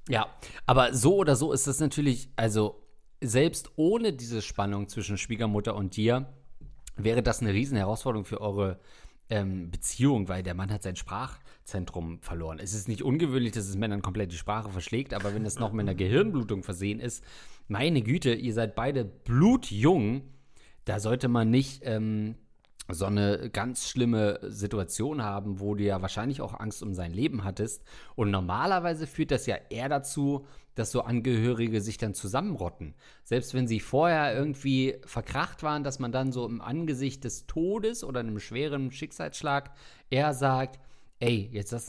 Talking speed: 165 wpm